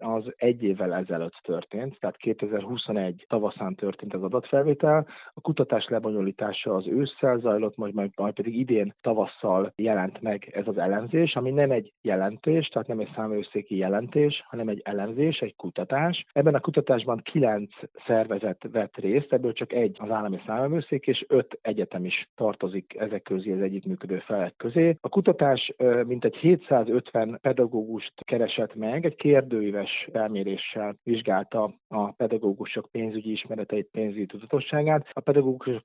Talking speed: 140 wpm